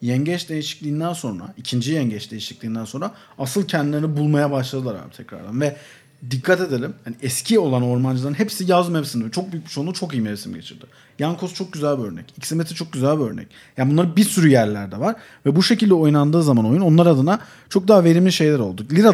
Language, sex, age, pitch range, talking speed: Turkish, male, 40-59, 135-200 Hz, 190 wpm